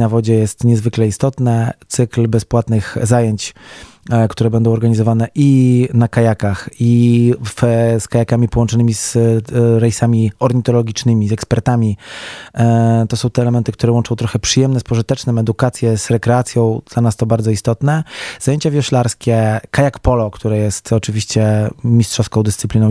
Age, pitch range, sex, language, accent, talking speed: 20-39, 110-120 Hz, male, Polish, native, 140 wpm